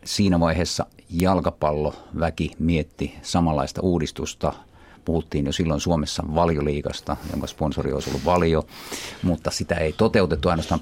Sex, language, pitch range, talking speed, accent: male, Finnish, 75-90 Hz, 115 wpm, native